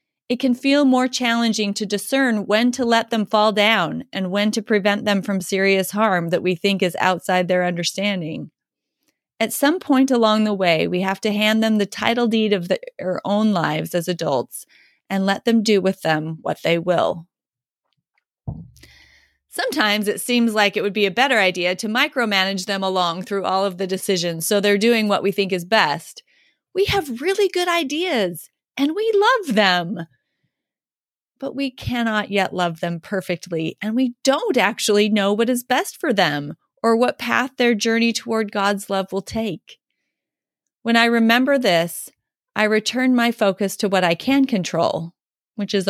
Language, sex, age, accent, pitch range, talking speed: English, female, 30-49, American, 190-235 Hz, 175 wpm